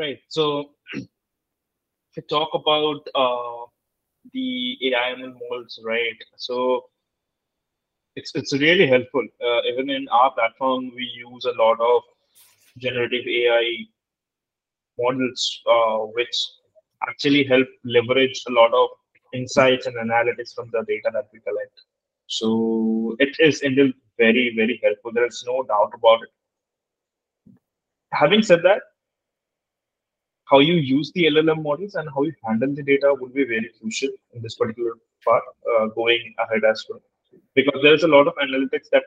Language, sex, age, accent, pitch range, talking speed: English, male, 20-39, Indian, 115-170 Hz, 145 wpm